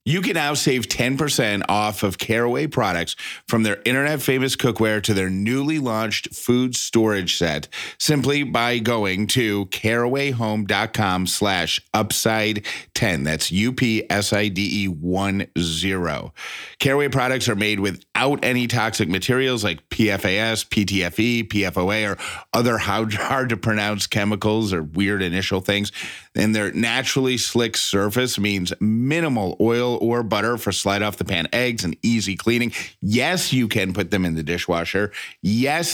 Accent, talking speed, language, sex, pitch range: American, 130 wpm, English, male, 100-120 Hz